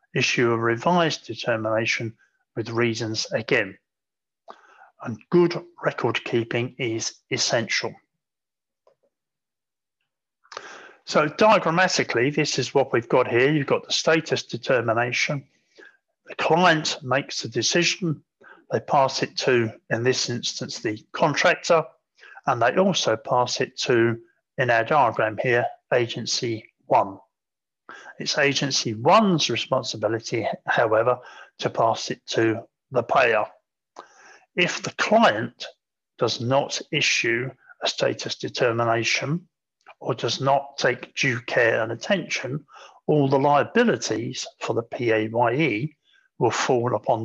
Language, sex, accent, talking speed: English, male, British, 115 wpm